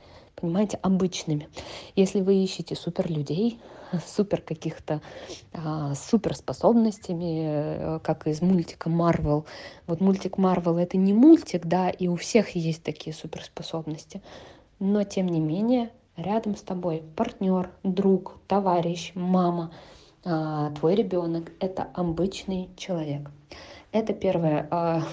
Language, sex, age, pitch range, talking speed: English, female, 20-39, 165-195 Hz, 115 wpm